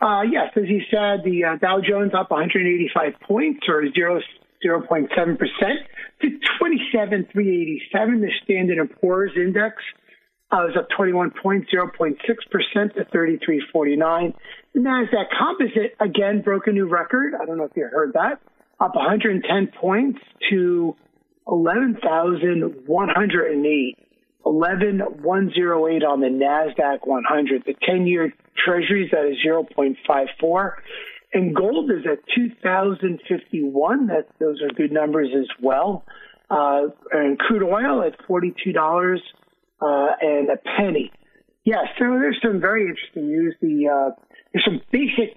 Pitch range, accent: 160-220 Hz, American